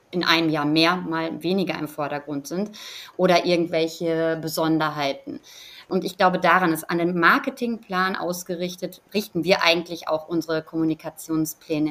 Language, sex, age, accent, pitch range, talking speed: German, female, 30-49, German, 155-175 Hz, 135 wpm